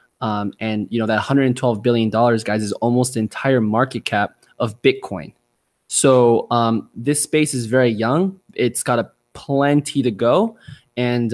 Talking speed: 165 wpm